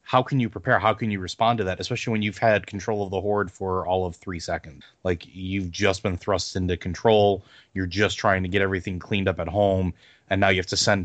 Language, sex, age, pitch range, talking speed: English, male, 30-49, 95-110 Hz, 250 wpm